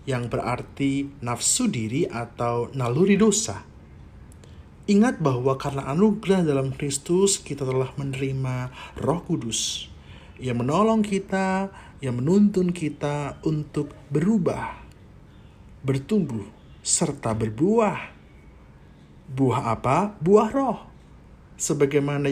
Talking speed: 90 wpm